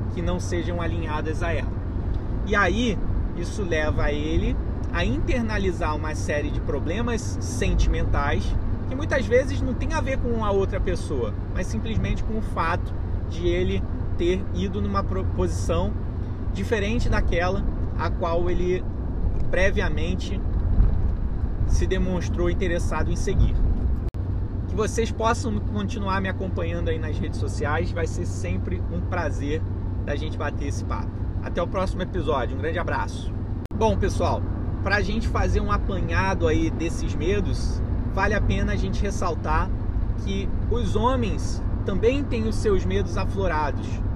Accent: Brazilian